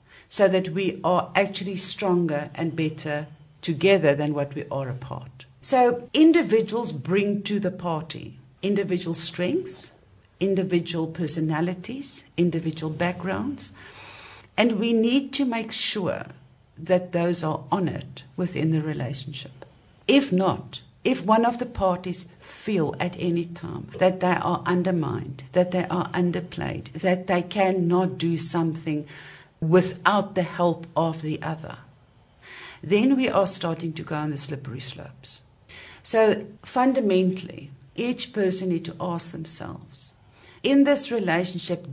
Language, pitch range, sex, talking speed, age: English, 150-185 Hz, female, 130 wpm, 60-79